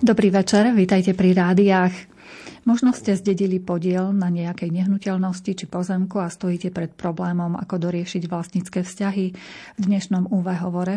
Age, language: 30-49, Slovak